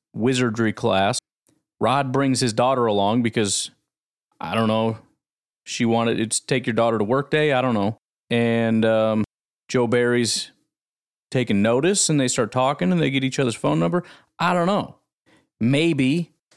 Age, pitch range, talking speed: 30-49, 115-155 Hz, 160 wpm